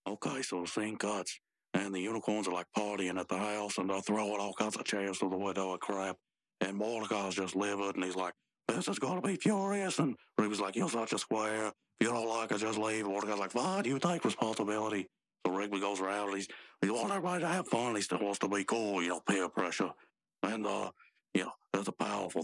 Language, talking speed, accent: English, 240 wpm, American